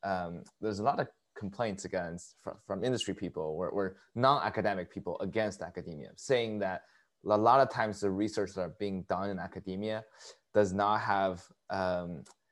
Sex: male